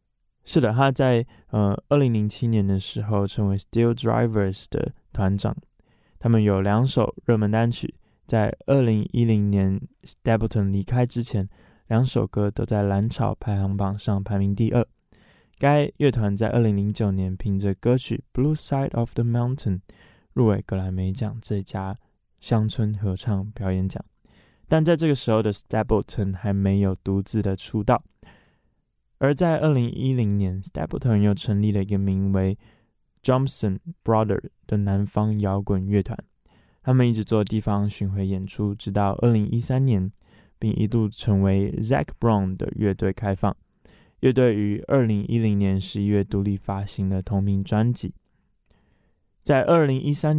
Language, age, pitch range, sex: Chinese, 20-39, 100-120 Hz, male